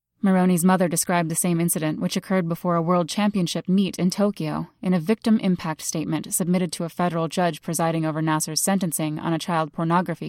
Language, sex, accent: English, female, American